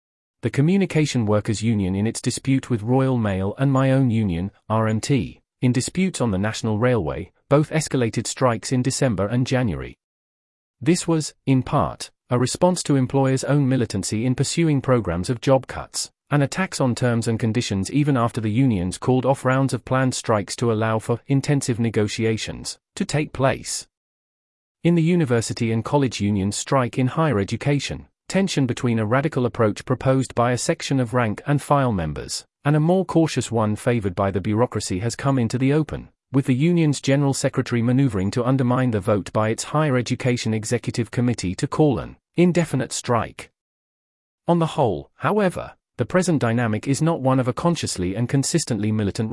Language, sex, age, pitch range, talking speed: English, male, 40-59, 110-140 Hz, 175 wpm